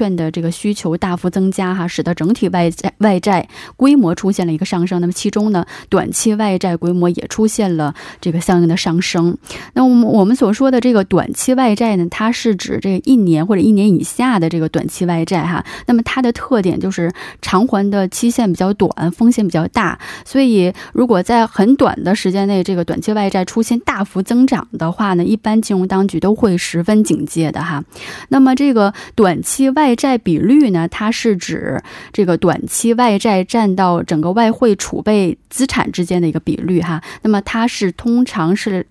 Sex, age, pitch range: female, 20-39, 175-230 Hz